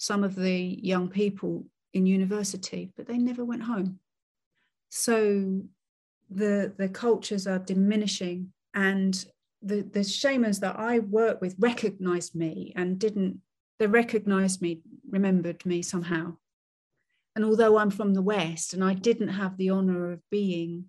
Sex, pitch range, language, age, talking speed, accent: female, 180-205 Hz, English, 40-59, 145 wpm, British